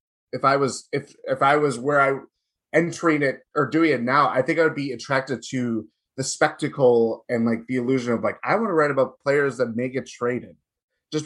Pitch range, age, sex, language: 115-145 Hz, 20-39, male, English